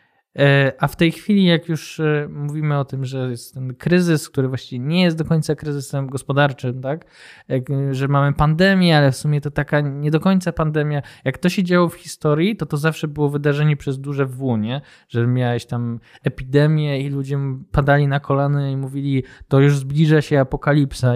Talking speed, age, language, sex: 185 wpm, 20-39, Polish, male